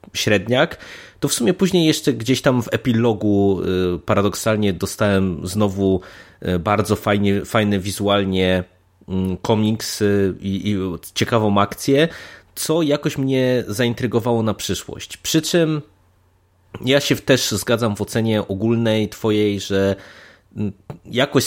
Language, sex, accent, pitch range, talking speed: Polish, male, native, 95-120 Hz, 110 wpm